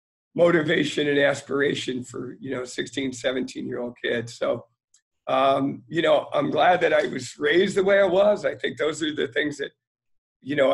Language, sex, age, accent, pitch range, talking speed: English, male, 40-59, American, 135-190 Hz, 180 wpm